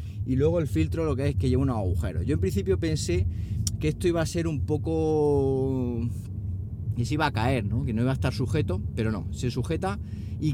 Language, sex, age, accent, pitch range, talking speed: Spanish, male, 30-49, Spanish, 95-125 Hz, 220 wpm